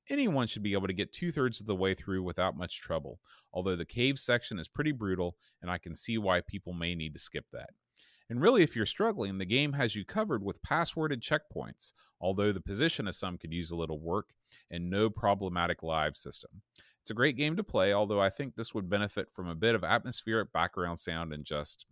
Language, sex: English, male